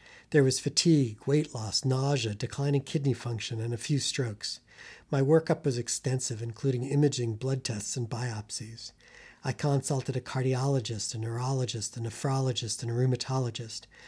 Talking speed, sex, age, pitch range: 145 wpm, male, 40-59, 120-145 Hz